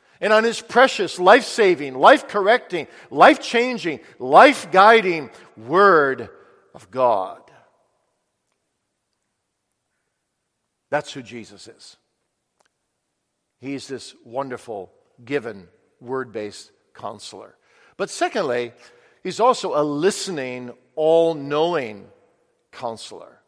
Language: English